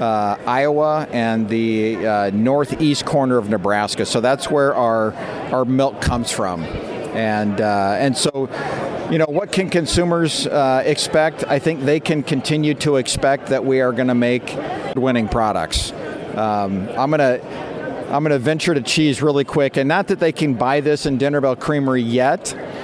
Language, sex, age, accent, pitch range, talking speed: English, male, 50-69, American, 120-150 Hz, 170 wpm